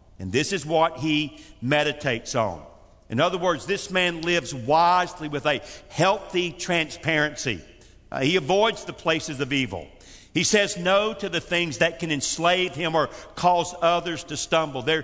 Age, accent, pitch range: 50-69, American, 130-175 Hz